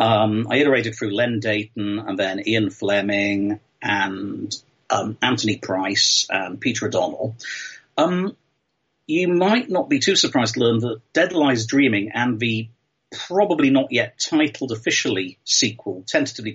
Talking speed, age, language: 140 wpm, 40-59, English